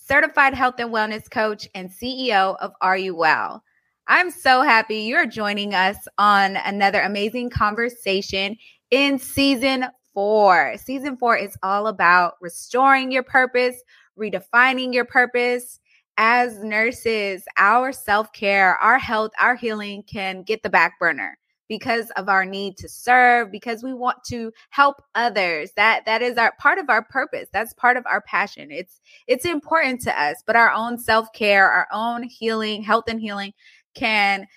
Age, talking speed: 20-39, 155 wpm